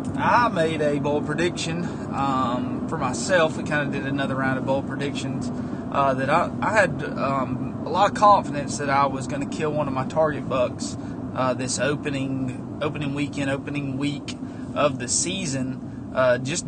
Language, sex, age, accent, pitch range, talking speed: English, male, 20-39, American, 130-160 Hz, 175 wpm